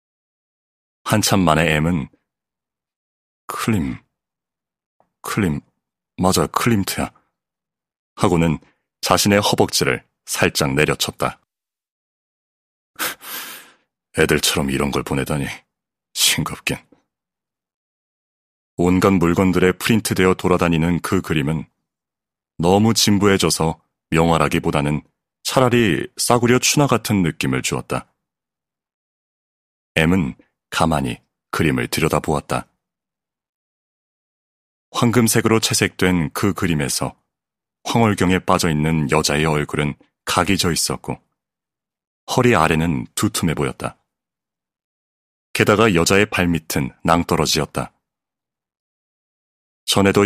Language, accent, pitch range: Korean, native, 75-100 Hz